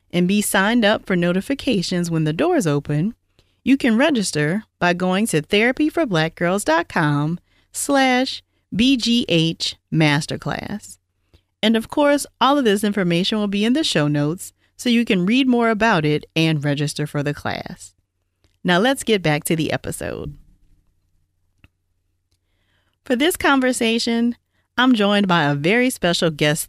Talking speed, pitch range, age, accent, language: 135 wpm, 145-235 Hz, 40-59, American, English